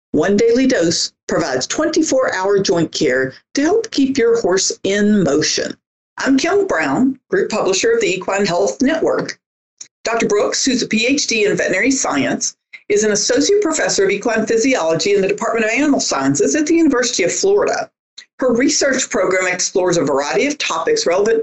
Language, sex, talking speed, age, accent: English, female, 165 wpm, 50-69, American